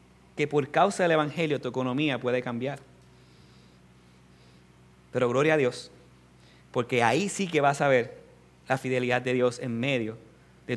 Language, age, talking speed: Spanish, 30-49, 150 wpm